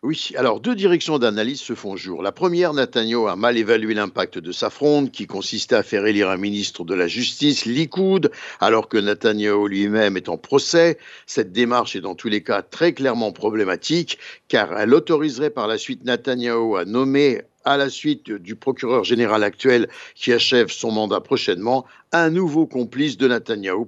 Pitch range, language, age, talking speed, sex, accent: 120-170 Hz, Italian, 60-79, 180 wpm, male, French